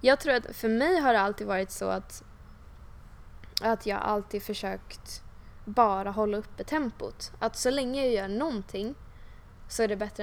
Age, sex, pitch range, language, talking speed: 10-29, female, 195-235 Hz, Swedish, 170 wpm